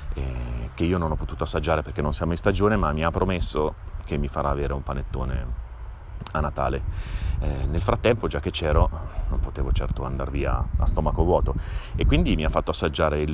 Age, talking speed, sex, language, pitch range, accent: 30-49, 200 wpm, male, Italian, 70-85 Hz, native